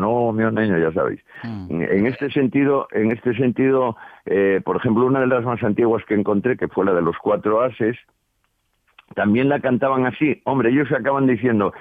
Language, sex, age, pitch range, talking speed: Spanish, male, 60-79, 105-140 Hz, 190 wpm